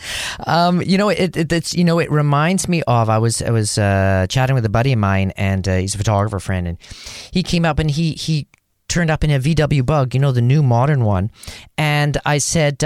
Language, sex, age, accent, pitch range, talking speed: English, male, 40-59, American, 115-160 Hz, 240 wpm